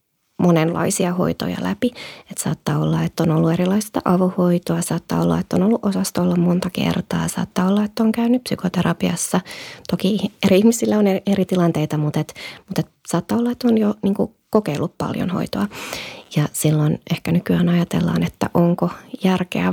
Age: 20-39